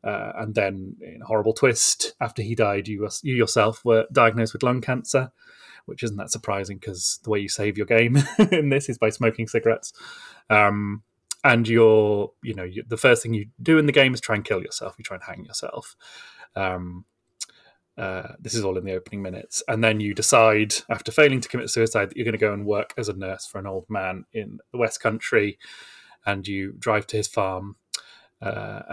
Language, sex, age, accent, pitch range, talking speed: English, male, 30-49, British, 100-120 Hz, 215 wpm